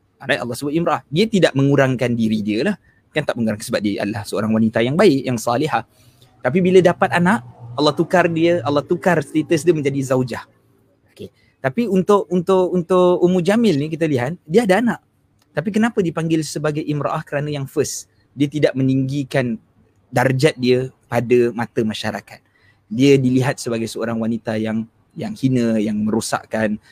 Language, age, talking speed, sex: Malay, 20-39, 165 wpm, male